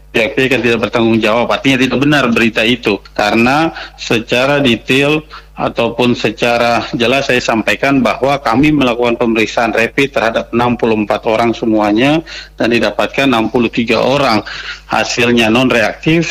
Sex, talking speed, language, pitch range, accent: male, 120 wpm, Indonesian, 110-130 Hz, native